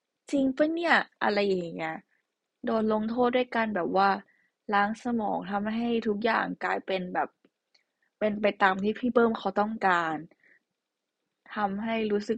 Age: 20-39